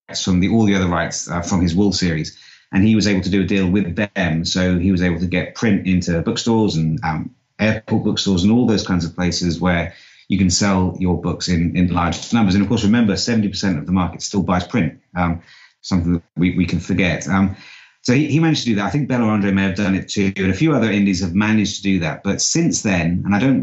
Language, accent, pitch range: English, British, 90-100 Hz